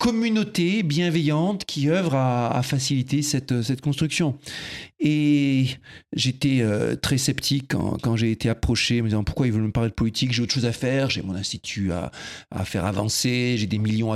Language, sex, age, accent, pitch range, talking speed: French, male, 40-59, French, 125-165 Hz, 185 wpm